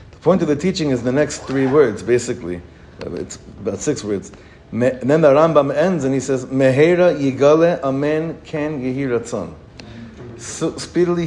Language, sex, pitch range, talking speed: English, male, 115-150 Hz, 155 wpm